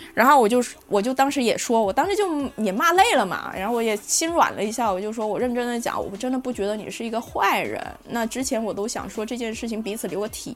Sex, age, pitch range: female, 20-39, 205-270 Hz